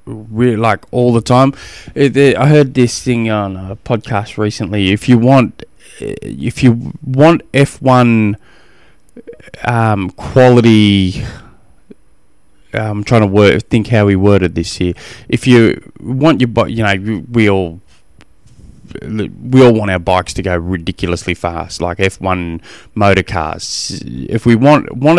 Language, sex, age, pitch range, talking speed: English, male, 20-39, 95-125 Hz, 135 wpm